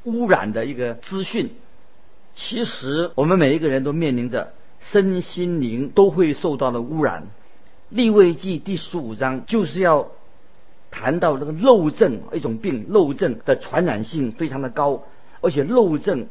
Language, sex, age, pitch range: Chinese, male, 50-69, 125-175 Hz